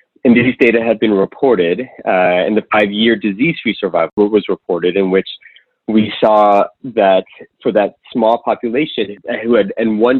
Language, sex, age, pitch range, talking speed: English, male, 30-49, 95-115 Hz, 160 wpm